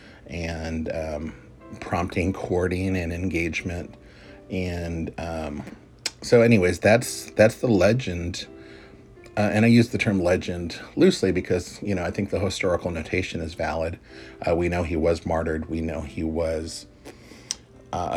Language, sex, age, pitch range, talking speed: English, male, 40-59, 80-100 Hz, 140 wpm